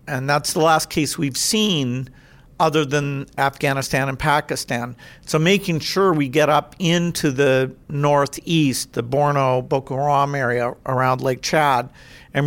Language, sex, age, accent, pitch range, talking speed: English, male, 50-69, American, 135-155 Hz, 145 wpm